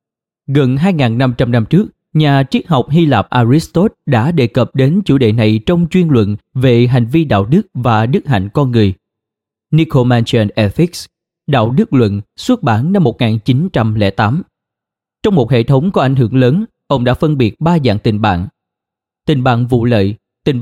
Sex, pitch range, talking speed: male, 115-150 Hz, 175 wpm